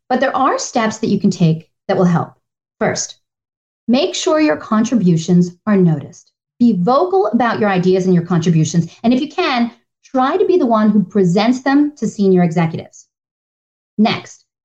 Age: 40-59